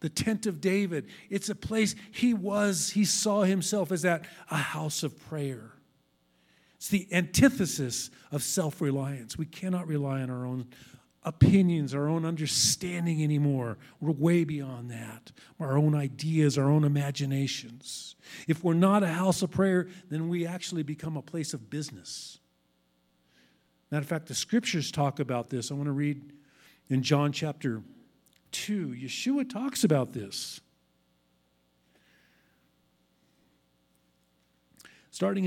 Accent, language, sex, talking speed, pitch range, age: American, English, male, 135 wpm, 120-175 Hz, 50-69